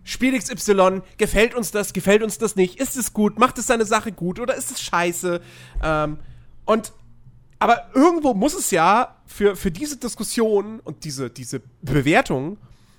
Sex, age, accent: male, 40-59, German